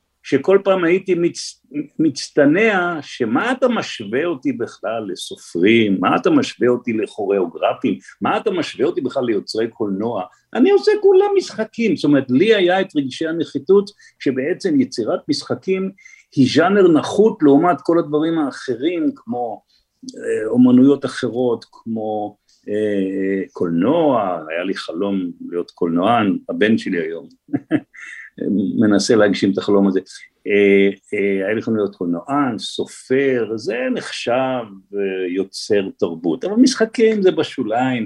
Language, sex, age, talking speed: Hebrew, male, 50-69, 120 wpm